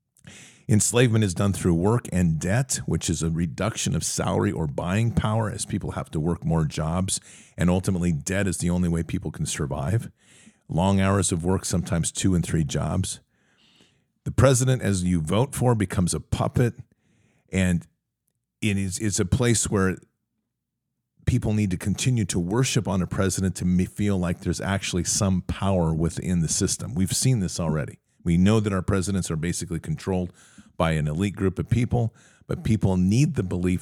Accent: American